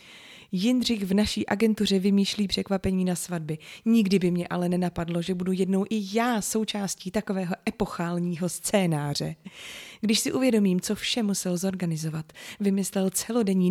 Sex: female